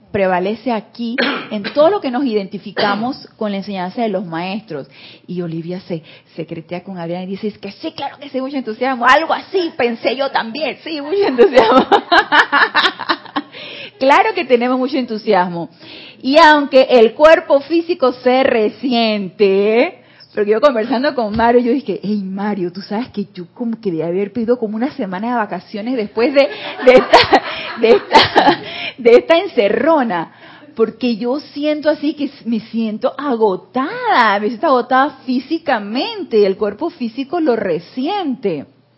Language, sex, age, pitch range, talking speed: Spanish, female, 30-49, 210-290 Hz, 150 wpm